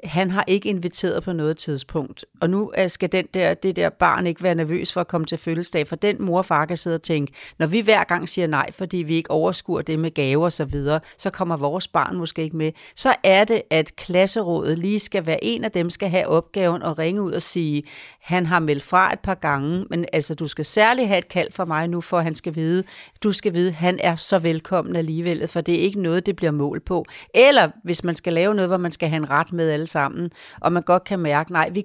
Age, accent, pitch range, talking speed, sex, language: 40-59, native, 155-185 Hz, 255 wpm, female, Danish